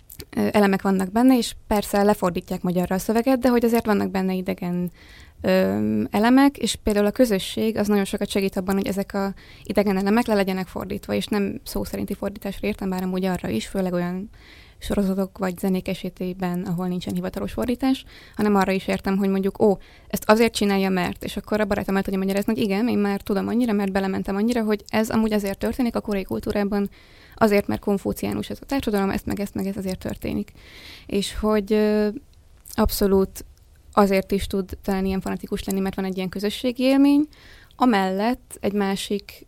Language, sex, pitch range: Hungarian, female, 190-210 Hz